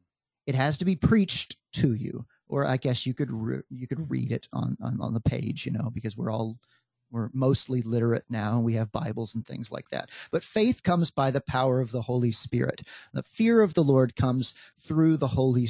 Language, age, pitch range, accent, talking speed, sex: English, 40-59, 125-175 Hz, American, 220 wpm, male